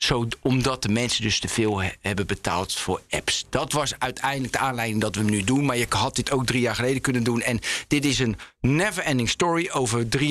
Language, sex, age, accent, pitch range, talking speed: Dutch, male, 50-69, Dutch, 120-150 Hz, 225 wpm